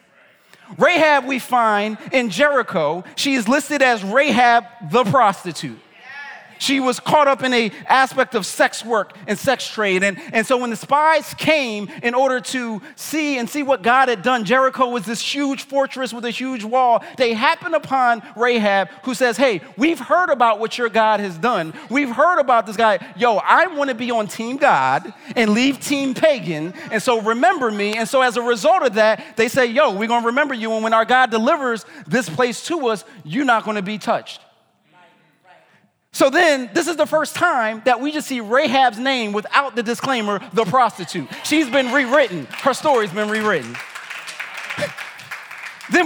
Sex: male